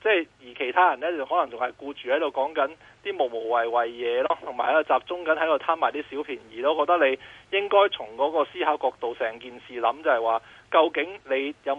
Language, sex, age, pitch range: Chinese, male, 20-39, 125-180 Hz